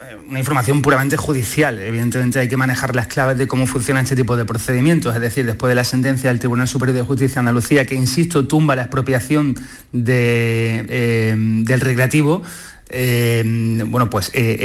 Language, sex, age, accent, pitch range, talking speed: Spanish, male, 30-49, Spanish, 120-150 Hz, 170 wpm